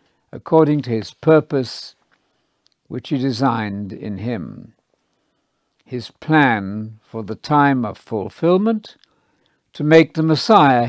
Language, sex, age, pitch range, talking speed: English, male, 60-79, 110-155 Hz, 110 wpm